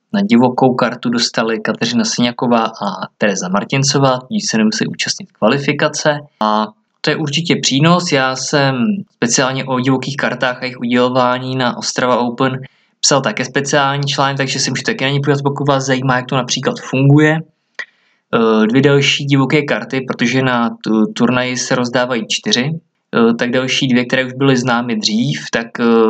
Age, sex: 20-39, male